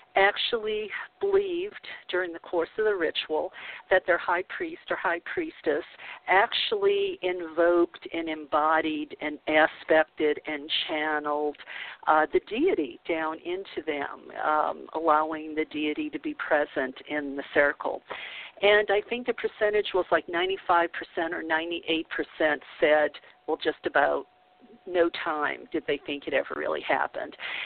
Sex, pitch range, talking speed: female, 160-220 Hz, 135 wpm